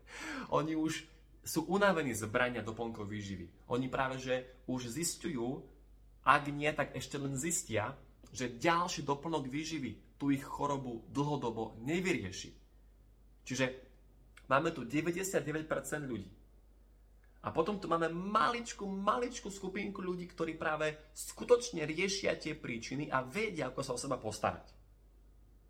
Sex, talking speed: male, 125 wpm